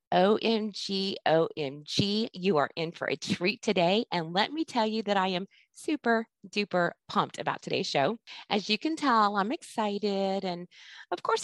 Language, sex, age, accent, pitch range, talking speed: English, female, 30-49, American, 170-220 Hz, 170 wpm